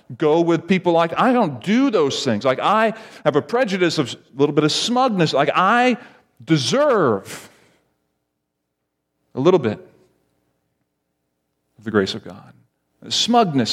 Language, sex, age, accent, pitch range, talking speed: English, male, 40-59, American, 120-170 Hz, 140 wpm